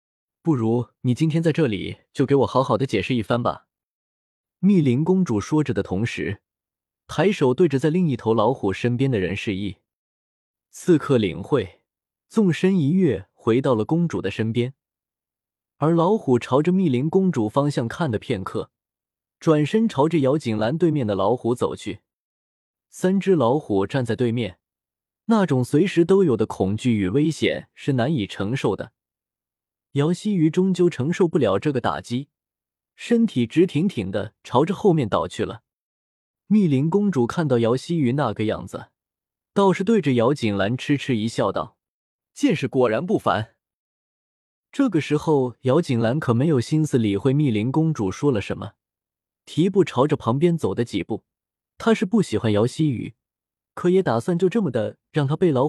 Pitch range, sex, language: 110-170 Hz, male, Chinese